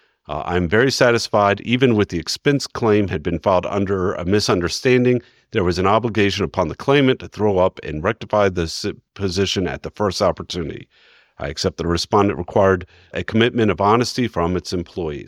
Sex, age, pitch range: male, 50-69, 95-115 Hz